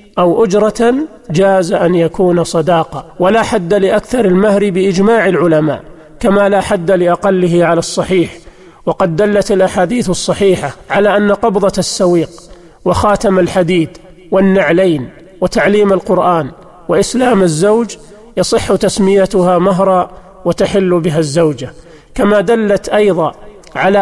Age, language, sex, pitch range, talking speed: 40-59, Arabic, male, 175-200 Hz, 105 wpm